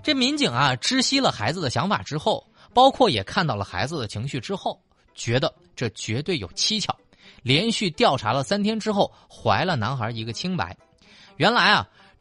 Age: 20-39